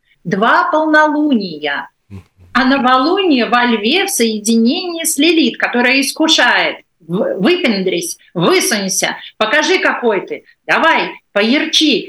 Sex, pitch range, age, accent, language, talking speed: female, 195-285 Hz, 40-59, native, Russian, 95 wpm